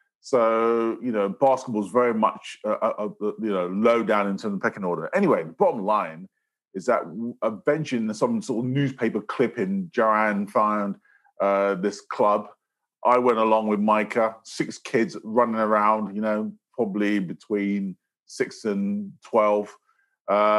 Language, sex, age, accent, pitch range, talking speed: English, male, 30-49, British, 105-130 Hz, 150 wpm